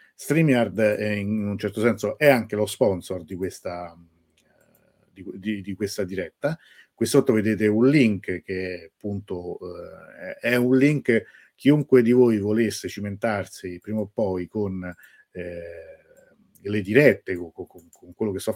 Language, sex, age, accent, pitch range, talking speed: Italian, male, 50-69, native, 95-125 Hz, 150 wpm